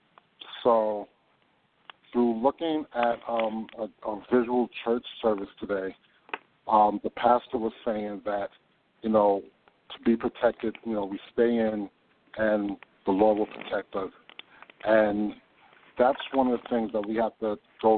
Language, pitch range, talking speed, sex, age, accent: English, 105-115 Hz, 145 wpm, male, 50-69, American